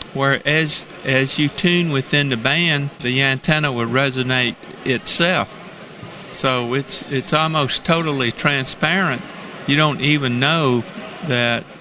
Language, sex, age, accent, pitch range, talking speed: English, male, 50-69, American, 120-155 Hz, 120 wpm